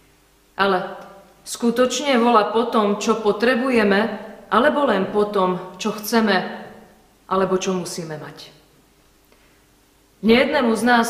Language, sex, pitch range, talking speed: Slovak, female, 195-230 Hz, 95 wpm